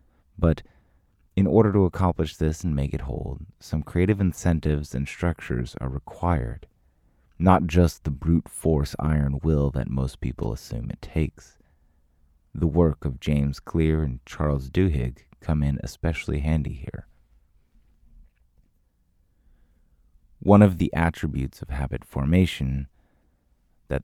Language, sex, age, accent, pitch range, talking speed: English, male, 30-49, American, 70-90 Hz, 125 wpm